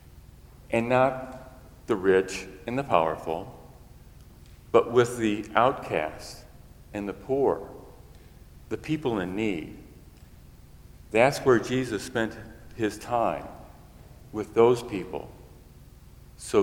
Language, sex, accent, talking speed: English, male, American, 100 wpm